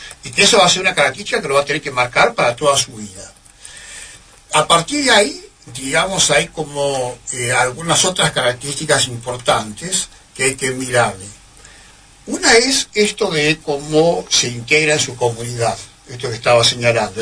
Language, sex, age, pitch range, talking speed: Spanish, male, 60-79, 120-155 Hz, 170 wpm